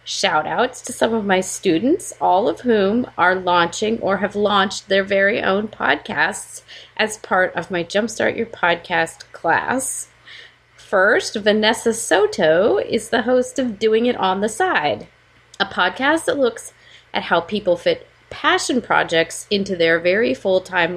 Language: English